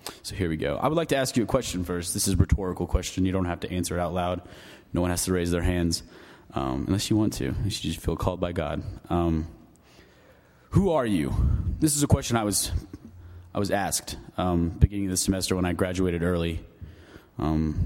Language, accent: English, American